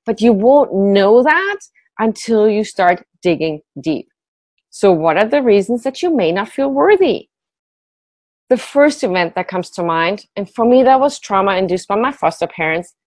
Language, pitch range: English, 180-265 Hz